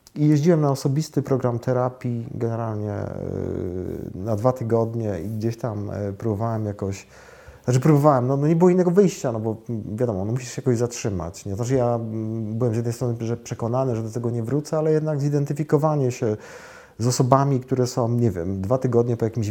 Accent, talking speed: native, 180 wpm